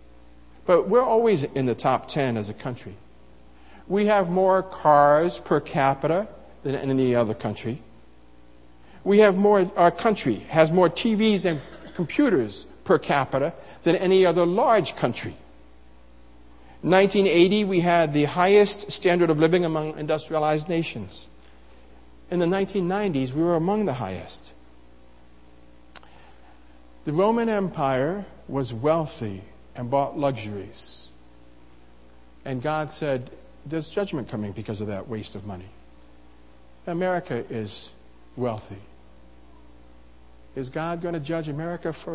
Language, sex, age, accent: English, male, 50-69, American